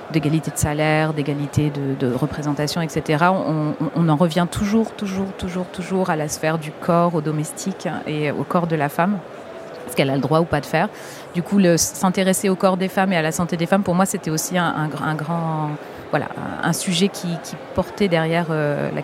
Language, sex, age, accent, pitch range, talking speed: French, female, 40-59, French, 150-185 Hz, 220 wpm